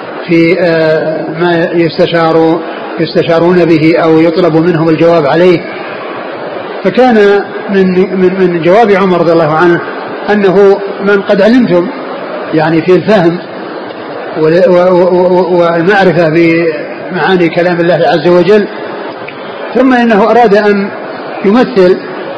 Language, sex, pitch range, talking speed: Arabic, male, 175-210 Hz, 95 wpm